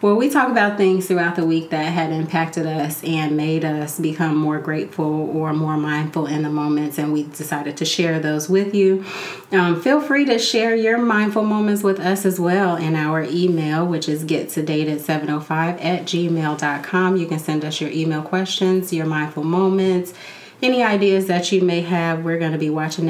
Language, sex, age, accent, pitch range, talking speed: English, female, 30-49, American, 155-190 Hz, 190 wpm